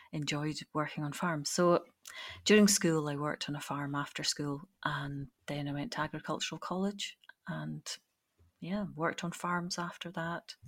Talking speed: 155 wpm